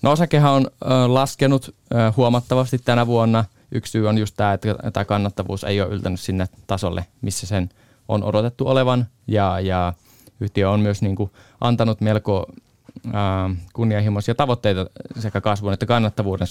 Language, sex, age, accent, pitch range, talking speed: Finnish, male, 20-39, native, 100-115 Hz, 140 wpm